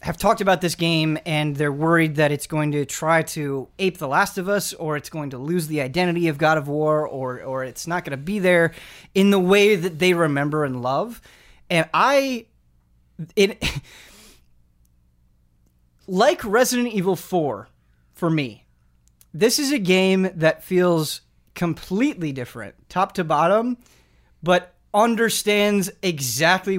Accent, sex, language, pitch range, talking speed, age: American, male, English, 140-190 Hz, 155 wpm, 30-49